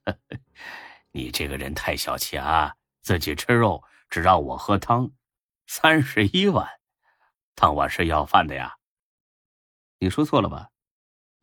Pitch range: 90-140 Hz